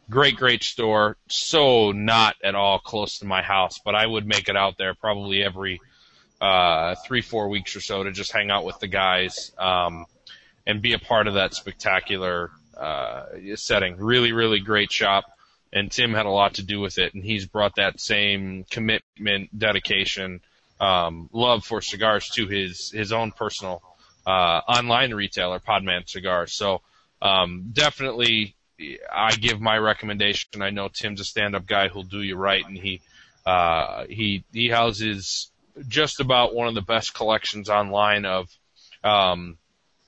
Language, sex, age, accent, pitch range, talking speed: English, male, 20-39, American, 95-110 Hz, 165 wpm